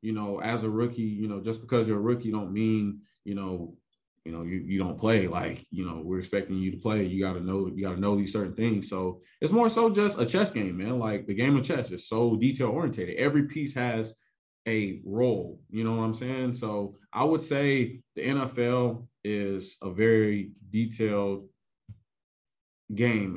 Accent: American